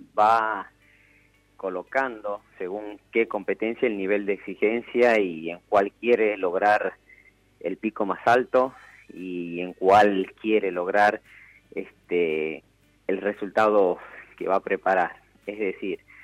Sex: male